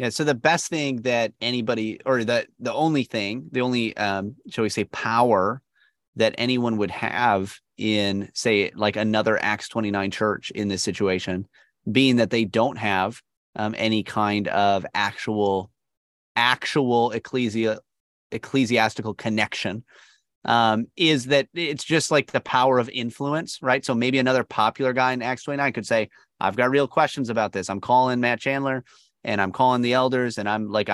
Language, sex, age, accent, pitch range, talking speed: English, male, 30-49, American, 110-135 Hz, 165 wpm